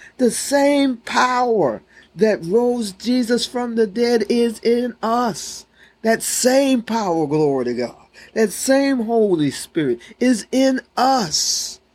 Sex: male